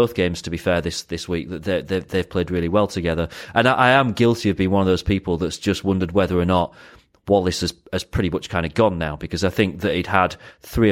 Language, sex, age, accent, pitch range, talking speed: English, male, 30-49, British, 85-105 Hz, 265 wpm